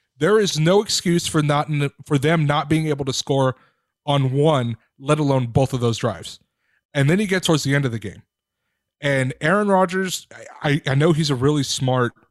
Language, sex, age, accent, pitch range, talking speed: English, male, 30-49, American, 130-165 Hz, 200 wpm